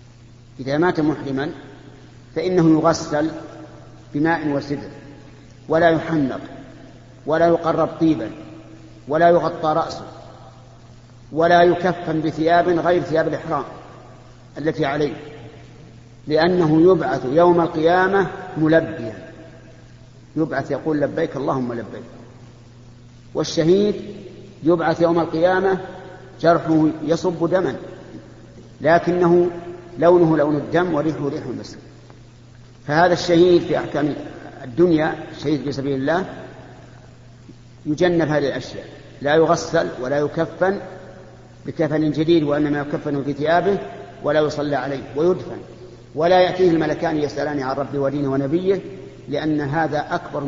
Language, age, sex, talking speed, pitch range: Arabic, 50-69, male, 100 wpm, 130-165 Hz